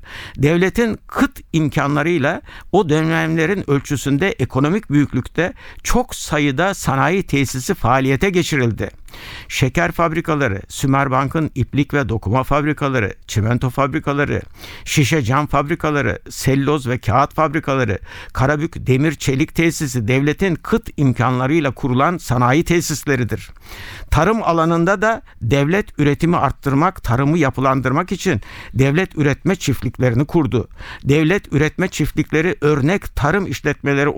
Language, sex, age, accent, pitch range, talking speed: Turkish, male, 60-79, native, 125-170 Hz, 105 wpm